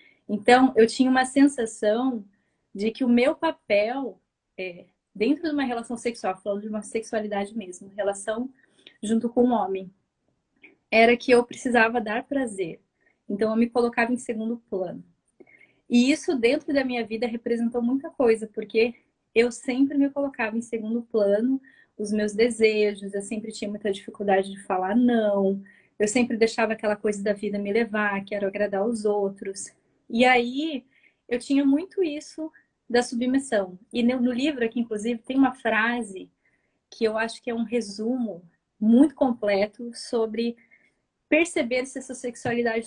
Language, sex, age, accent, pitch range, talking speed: English, female, 20-39, Brazilian, 210-255 Hz, 155 wpm